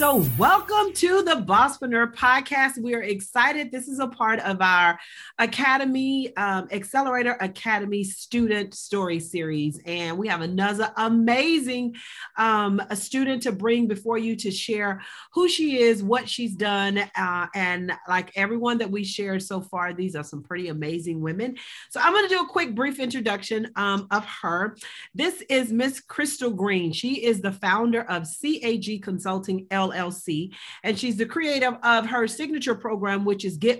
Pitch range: 190-245 Hz